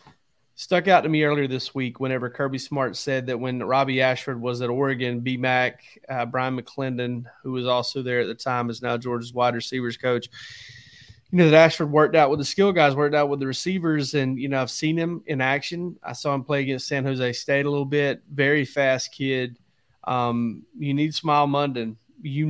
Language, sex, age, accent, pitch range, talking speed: English, male, 30-49, American, 125-145 Hz, 210 wpm